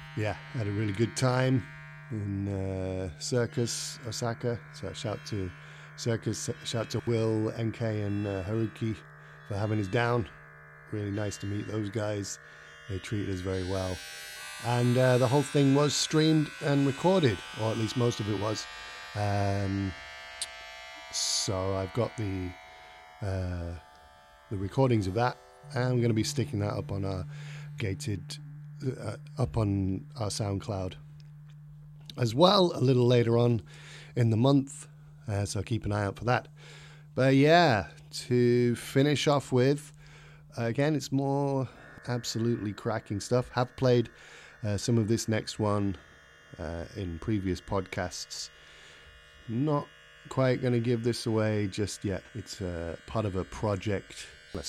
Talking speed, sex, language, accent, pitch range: 145 wpm, male, English, British, 95-130 Hz